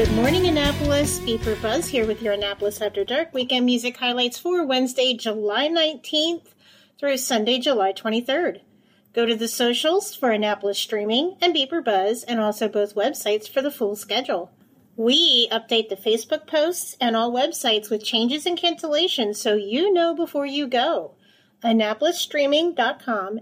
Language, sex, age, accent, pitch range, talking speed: English, female, 30-49, American, 215-295 Hz, 150 wpm